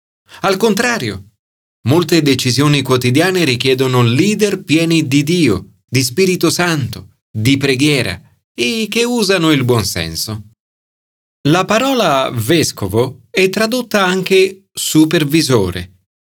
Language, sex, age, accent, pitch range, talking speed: Italian, male, 40-59, native, 110-180 Hz, 105 wpm